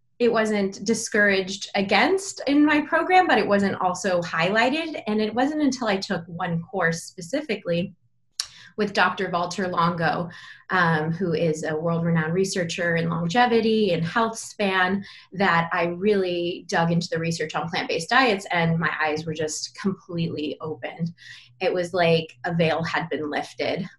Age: 20-39